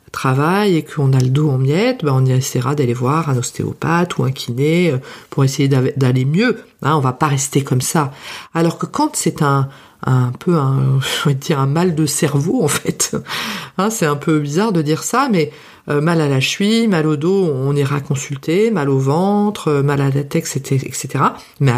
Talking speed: 210 wpm